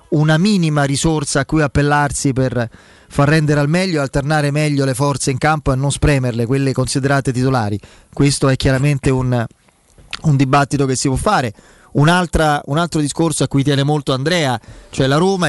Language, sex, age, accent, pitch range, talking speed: Italian, male, 30-49, native, 135-155 Hz, 175 wpm